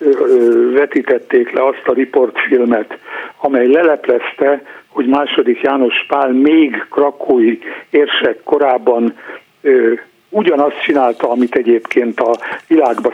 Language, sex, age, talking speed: Hungarian, male, 60-79, 95 wpm